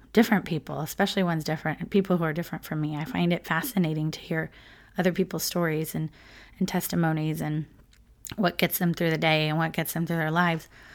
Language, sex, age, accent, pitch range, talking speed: English, female, 30-49, American, 160-190 Hz, 210 wpm